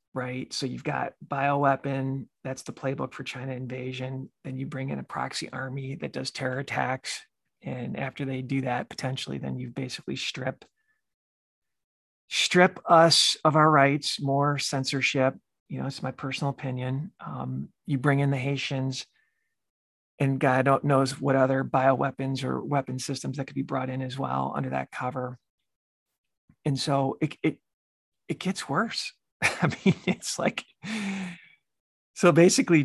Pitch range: 130-155 Hz